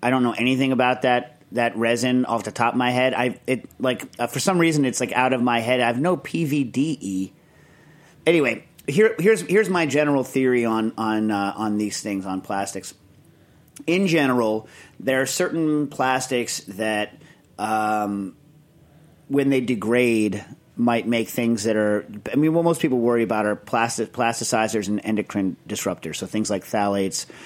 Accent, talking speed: American, 170 wpm